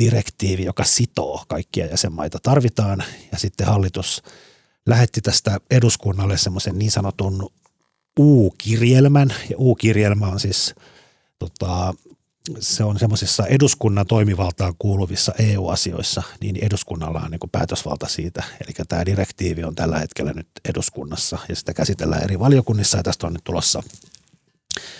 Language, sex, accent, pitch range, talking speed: Finnish, male, native, 95-115 Hz, 120 wpm